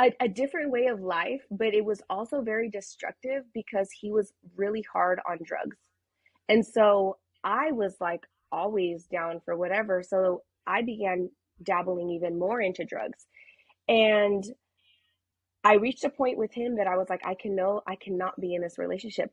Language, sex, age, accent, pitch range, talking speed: English, female, 20-39, American, 175-205 Hz, 175 wpm